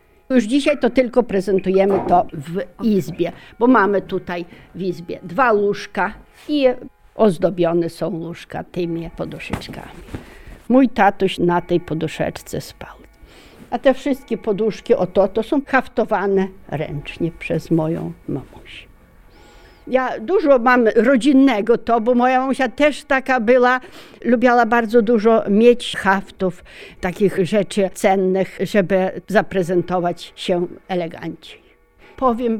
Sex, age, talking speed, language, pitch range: female, 60-79, 120 wpm, Polish, 175-235 Hz